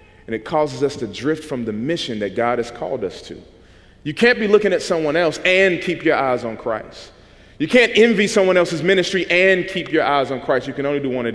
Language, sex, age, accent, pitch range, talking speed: English, male, 40-59, American, 120-195 Hz, 245 wpm